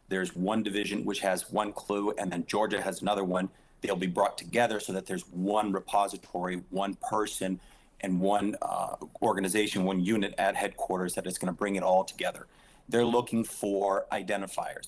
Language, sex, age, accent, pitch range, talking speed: English, male, 40-59, American, 95-110 Hz, 180 wpm